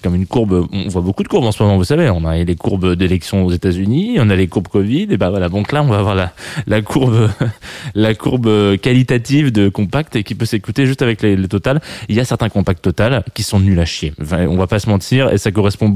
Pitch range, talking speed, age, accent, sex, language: 90-120 Hz, 270 wpm, 20-39, French, male, French